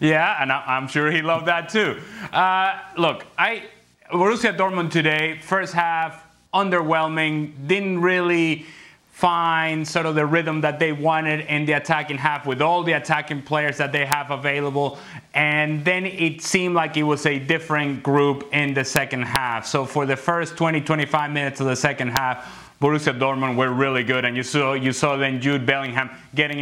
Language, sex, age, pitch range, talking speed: English, male, 30-49, 140-160 Hz, 180 wpm